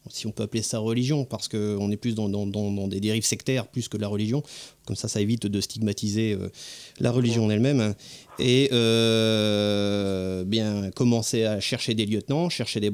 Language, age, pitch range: French, 30-49, 105-125 Hz